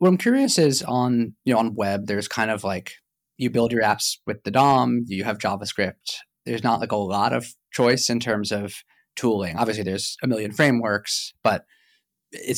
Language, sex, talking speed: English, male, 200 wpm